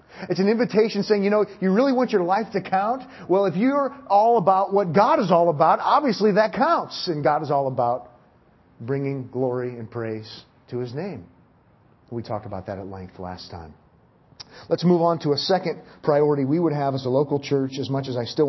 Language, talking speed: English, 210 wpm